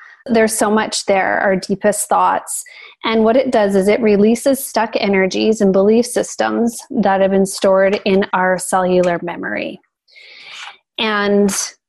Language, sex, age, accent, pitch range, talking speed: English, female, 20-39, American, 190-225 Hz, 140 wpm